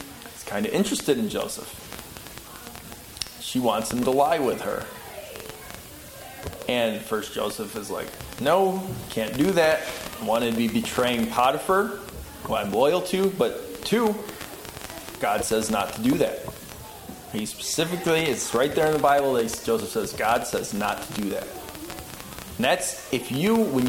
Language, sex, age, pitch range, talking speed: English, male, 20-39, 115-165 Hz, 155 wpm